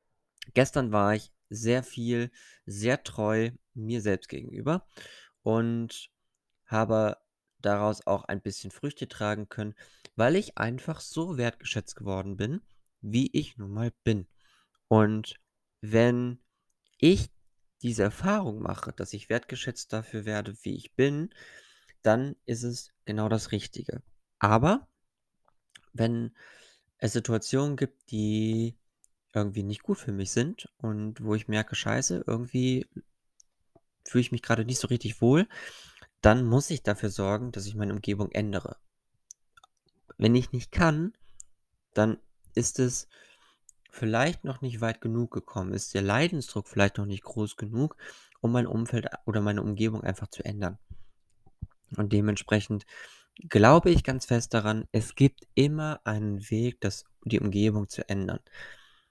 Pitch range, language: 105-125 Hz, German